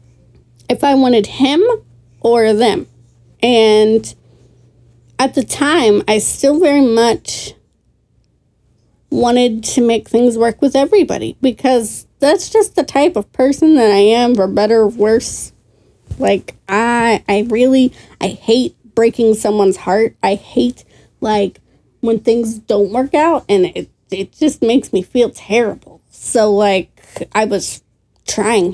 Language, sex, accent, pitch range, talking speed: English, female, American, 195-245 Hz, 135 wpm